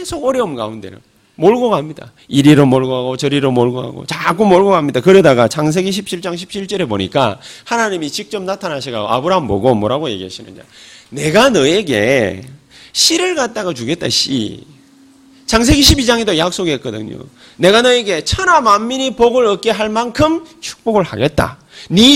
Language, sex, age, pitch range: Korean, male, 30-49, 145-240 Hz